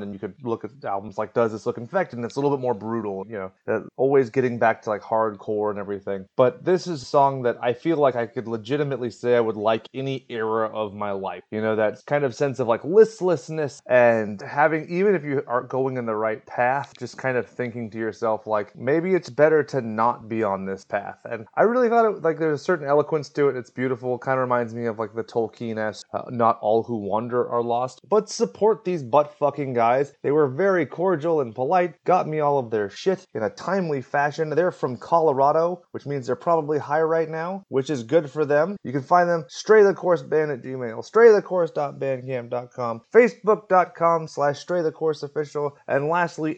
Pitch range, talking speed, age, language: 115-160 Hz, 205 wpm, 30-49, English